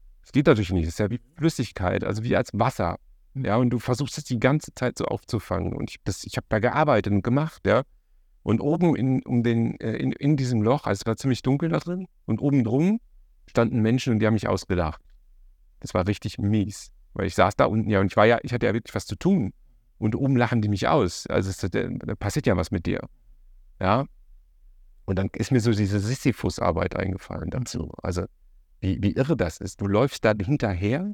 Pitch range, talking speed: 95-125 Hz, 220 wpm